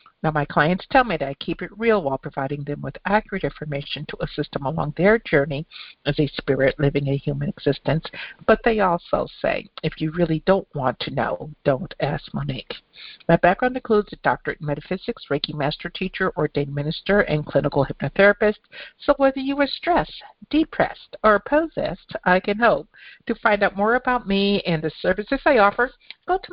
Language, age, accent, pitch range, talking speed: English, 60-79, American, 155-215 Hz, 185 wpm